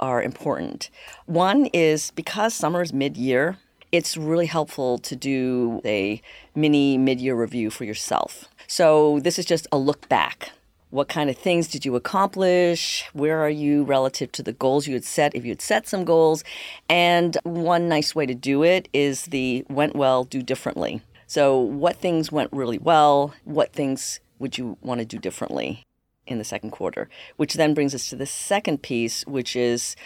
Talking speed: 180 wpm